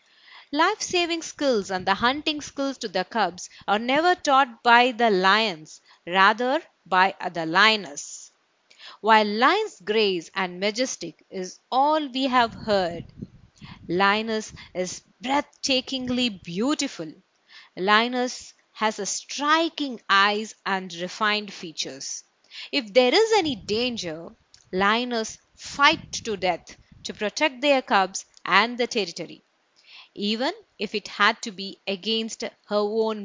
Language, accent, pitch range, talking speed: Tamil, native, 195-275 Hz, 115 wpm